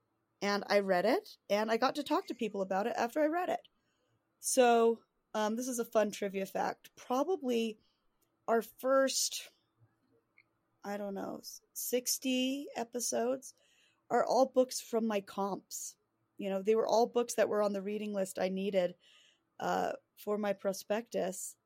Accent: American